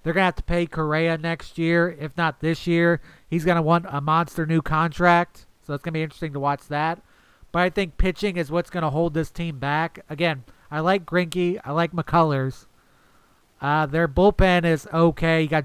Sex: male